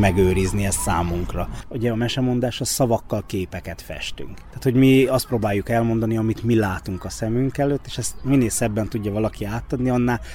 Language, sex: Hungarian, male